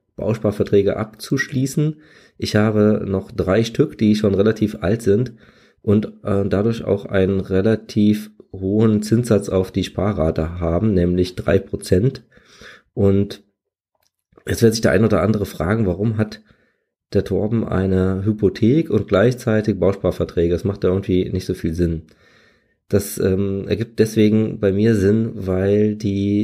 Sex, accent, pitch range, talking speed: male, German, 95-115 Hz, 140 wpm